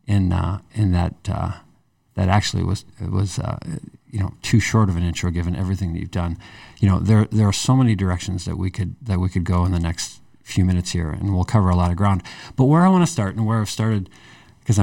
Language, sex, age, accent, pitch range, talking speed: English, male, 50-69, American, 95-115 Hz, 250 wpm